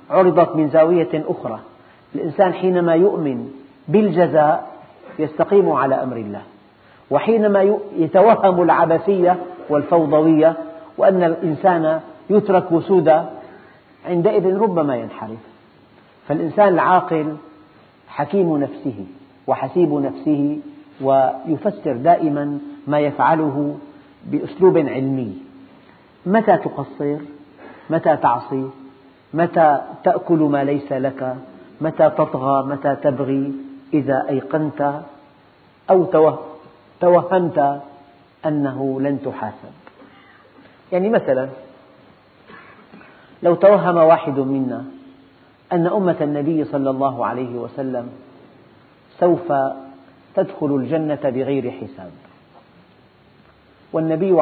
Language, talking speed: Arabic, 80 wpm